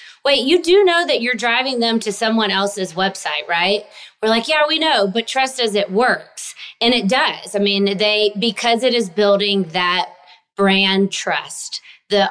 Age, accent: 30-49, American